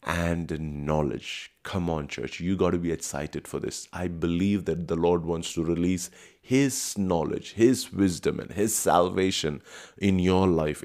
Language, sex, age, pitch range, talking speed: English, male, 30-49, 80-95 Hz, 165 wpm